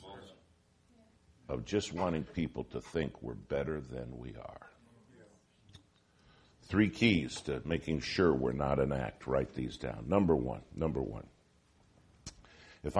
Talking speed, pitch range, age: 130 wpm, 65-95 Hz, 60-79